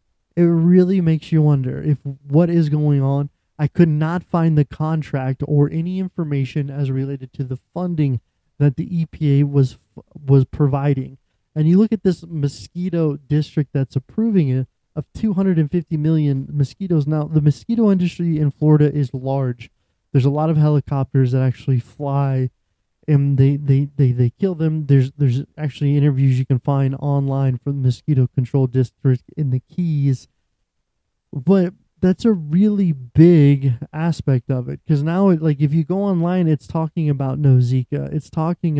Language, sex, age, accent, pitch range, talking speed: English, male, 20-39, American, 135-160 Hz, 160 wpm